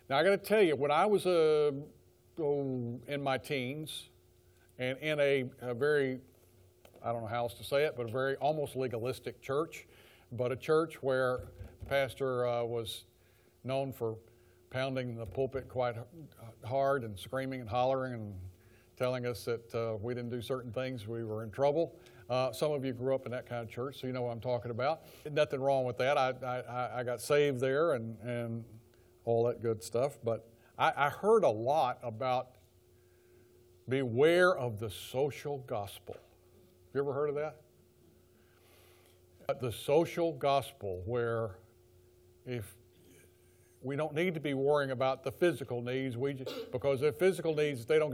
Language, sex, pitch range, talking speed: English, male, 115-140 Hz, 175 wpm